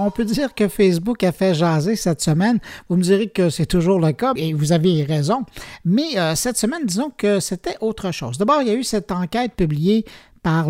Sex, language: male, French